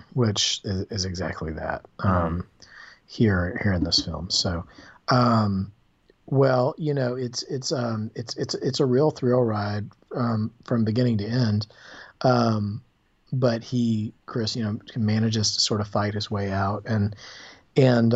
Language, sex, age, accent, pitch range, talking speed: English, male, 40-59, American, 95-120 Hz, 150 wpm